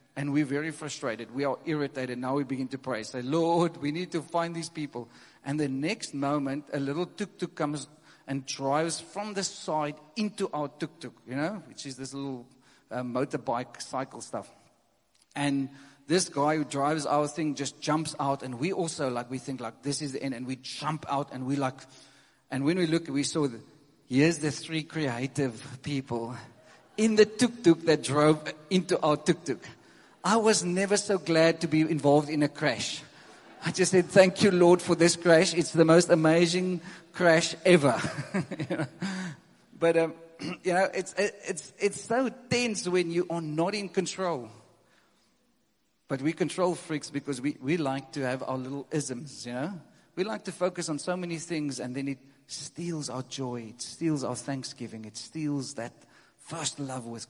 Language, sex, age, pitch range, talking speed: English, male, 40-59, 135-170 Hz, 180 wpm